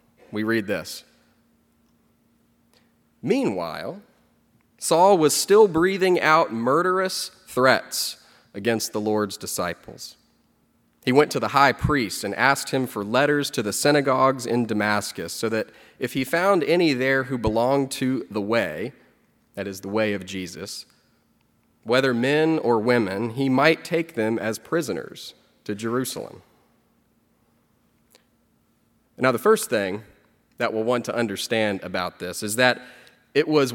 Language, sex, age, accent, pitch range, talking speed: English, male, 30-49, American, 105-150 Hz, 135 wpm